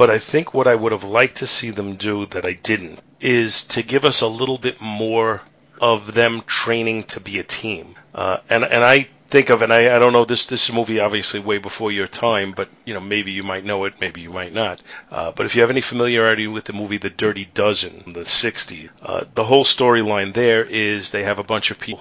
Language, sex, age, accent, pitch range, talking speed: English, male, 40-59, American, 105-120 Hz, 240 wpm